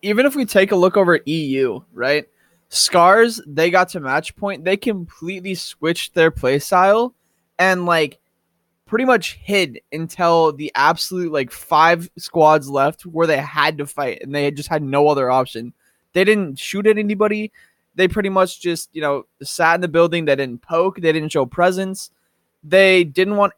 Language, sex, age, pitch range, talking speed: English, male, 20-39, 140-185 Hz, 180 wpm